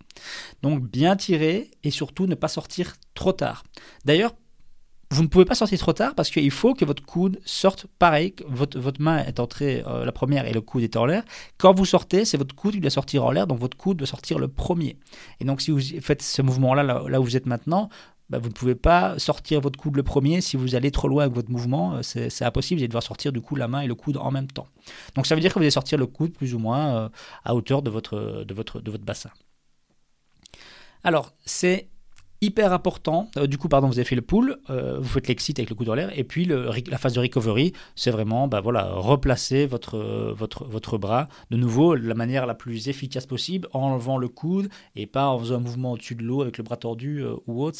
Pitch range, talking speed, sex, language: 120-160 Hz, 245 wpm, male, French